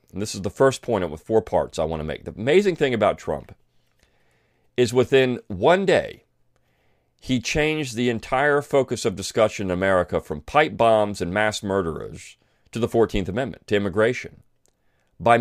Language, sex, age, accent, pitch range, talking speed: English, male, 40-59, American, 90-125 Hz, 170 wpm